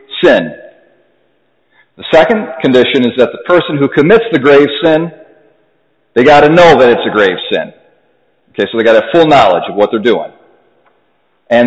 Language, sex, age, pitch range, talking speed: English, male, 40-59, 115-155 Hz, 170 wpm